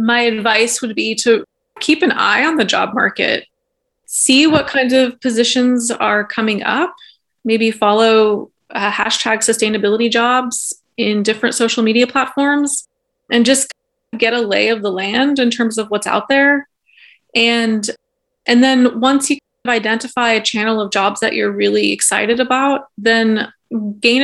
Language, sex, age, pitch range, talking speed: English, female, 20-39, 215-265 Hz, 155 wpm